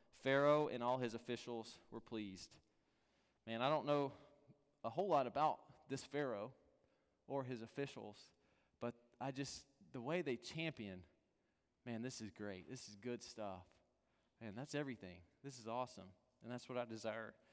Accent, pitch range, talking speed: American, 115-160 Hz, 160 wpm